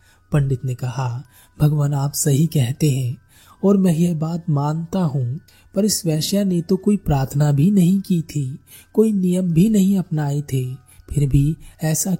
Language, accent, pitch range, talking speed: Hindi, native, 135-180 Hz, 165 wpm